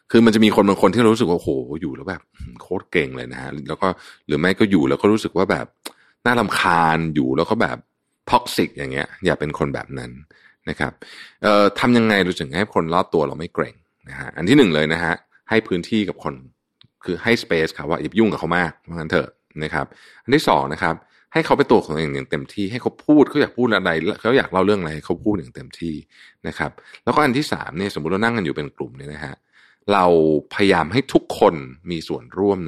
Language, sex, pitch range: Thai, male, 80-105 Hz